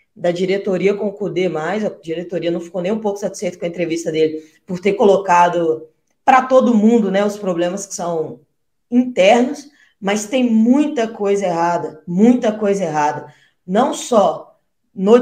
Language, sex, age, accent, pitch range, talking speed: Portuguese, female, 20-39, Brazilian, 185-230 Hz, 160 wpm